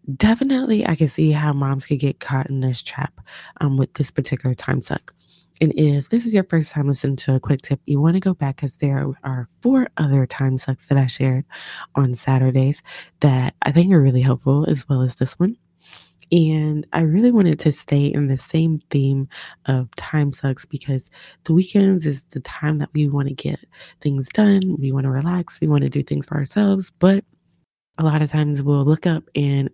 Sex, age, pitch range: female, 20-39, 135-160 Hz